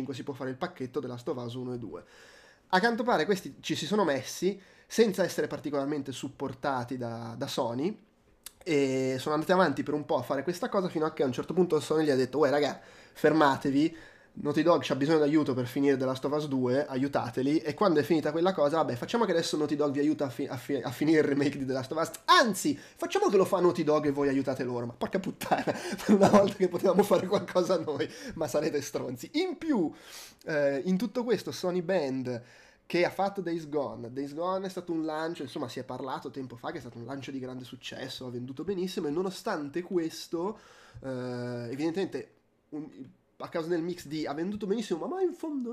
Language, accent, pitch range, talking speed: Italian, native, 135-180 Hz, 225 wpm